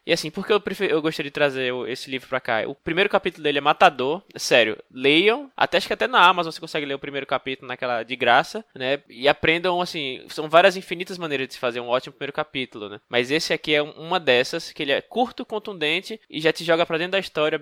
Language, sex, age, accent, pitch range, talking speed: Portuguese, male, 10-29, Brazilian, 135-165 Hz, 240 wpm